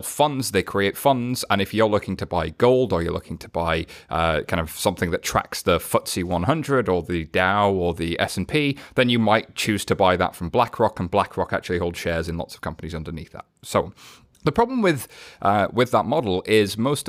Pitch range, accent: 90-120 Hz, British